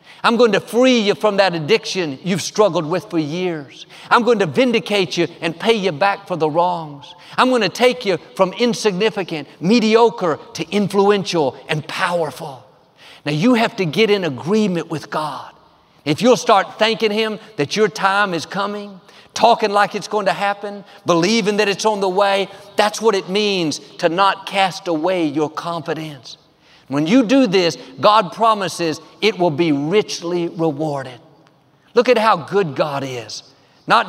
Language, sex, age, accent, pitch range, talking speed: English, male, 50-69, American, 160-210 Hz, 170 wpm